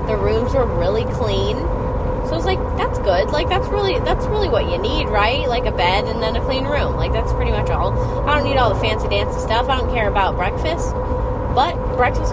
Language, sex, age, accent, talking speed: English, female, 10-29, American, 235 wpm